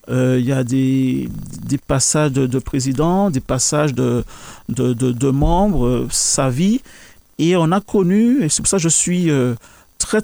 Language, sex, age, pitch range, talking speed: French, male, 40-59, 135-170 Hz, 205 wpm